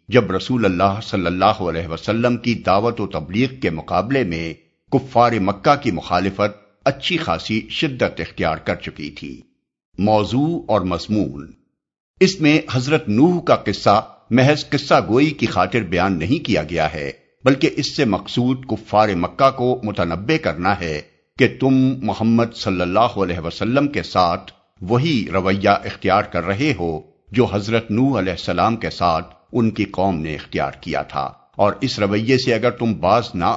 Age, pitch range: 60-79, 90-130 Hz